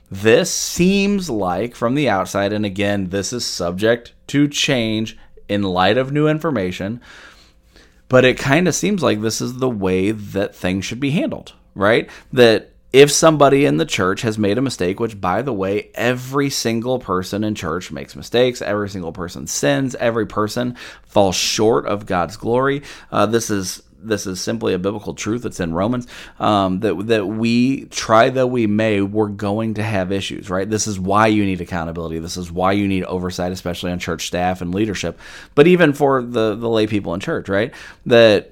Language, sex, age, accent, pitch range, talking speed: English, male, 30-49, American, 95-120 Hz, 190 wpm